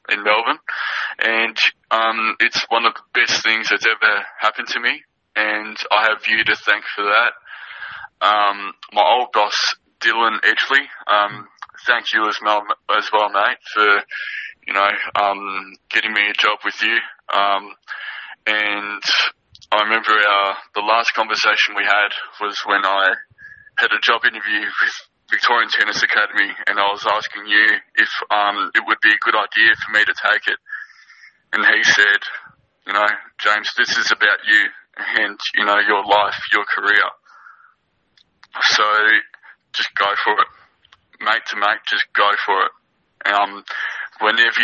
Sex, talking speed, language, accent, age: male, 155 wpm, English, Australian, 20-39